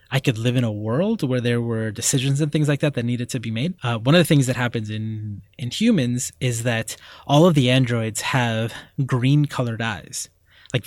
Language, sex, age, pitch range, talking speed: English, male, 20-39, 115-145 Hz, 220 wpm